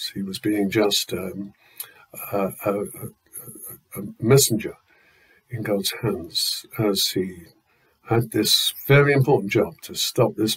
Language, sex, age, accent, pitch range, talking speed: English, male, 60-79, British, 110-135 Hz, 120 wpm